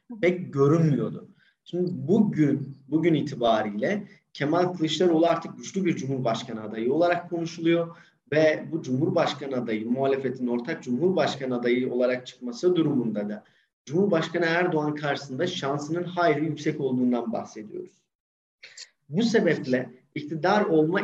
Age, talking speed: 40-59, 110 wpm